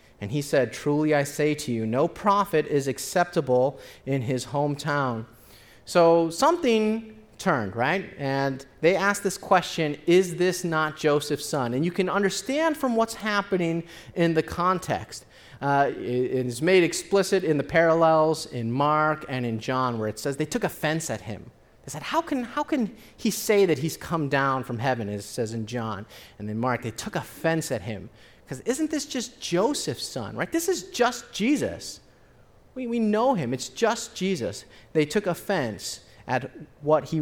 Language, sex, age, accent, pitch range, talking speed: English, male, 30-49, American, 130-190 Hz, 180 wpm